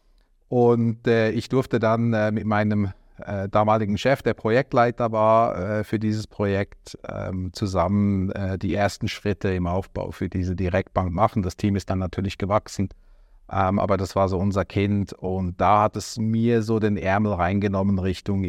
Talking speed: 170 wpm